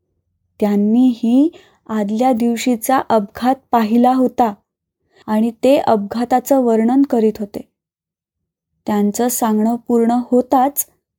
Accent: native